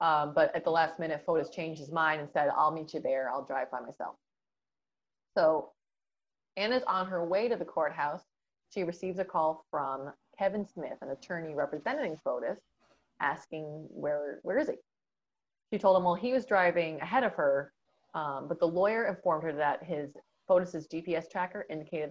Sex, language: female, English